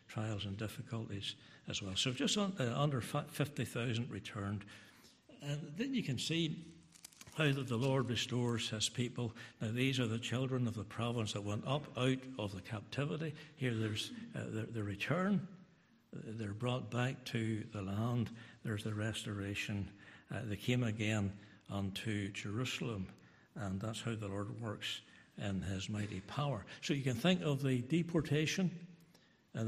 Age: 60-79